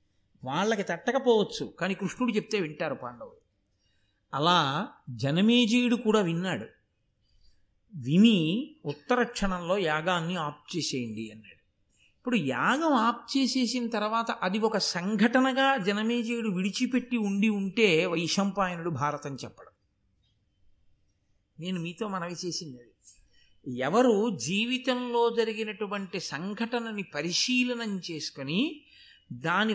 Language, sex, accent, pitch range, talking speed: Telugu, male, native, 155-235 Hz, 90 wpm